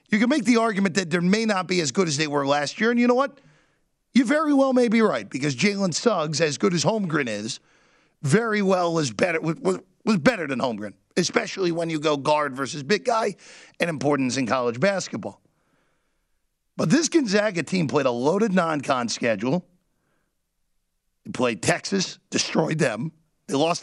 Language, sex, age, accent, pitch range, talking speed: English, male, 50-69, American, 145-195 Hz, 185 wpm